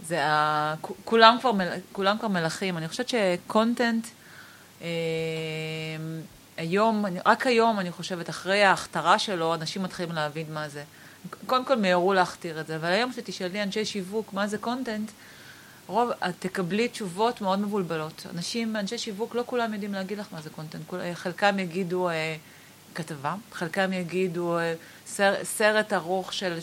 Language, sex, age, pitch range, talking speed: Hebrew, female, 30-49, 170-210 Hz, 145 wpm